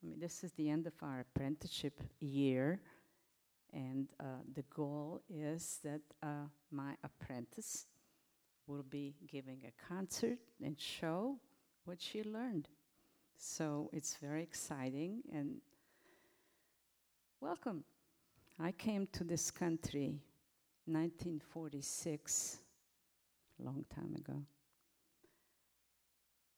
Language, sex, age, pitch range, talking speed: English, female, 50-69, 140-210 Hz, 95 wpm